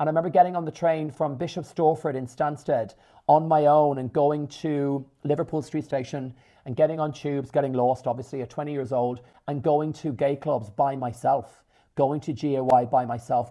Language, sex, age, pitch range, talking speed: English, male, 40-59, 130-155 Hz, 195 wpm